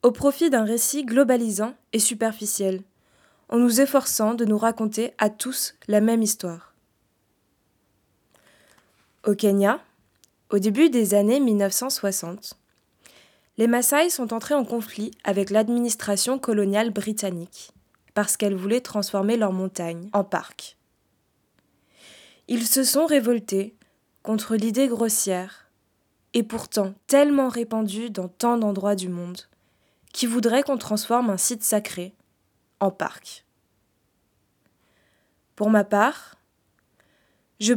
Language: French